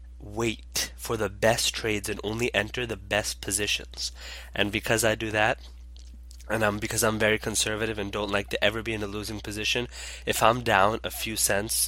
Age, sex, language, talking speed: 20-39, male, English, 190 wpm